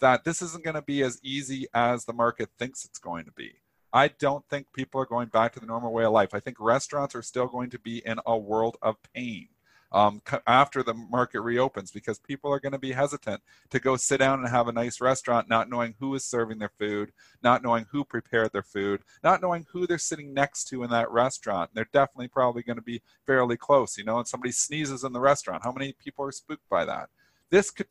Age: 40-59